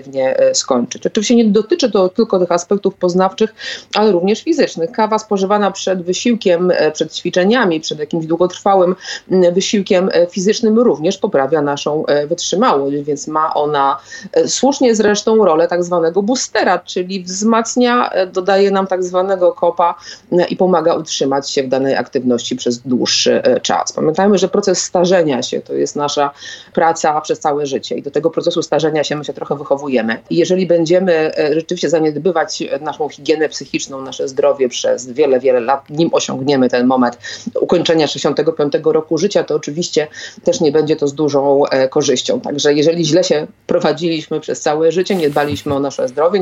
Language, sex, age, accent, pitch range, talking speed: Polish, female, 30-49, native, 150-205 Hz, 155 wpm